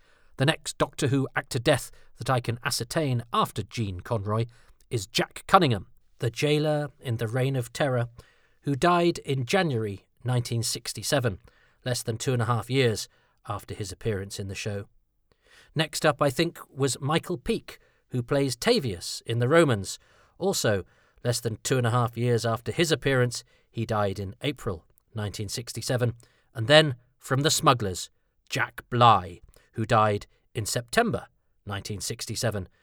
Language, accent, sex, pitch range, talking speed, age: English, British, male, 110-135 Hz, 150 wpm, 40-59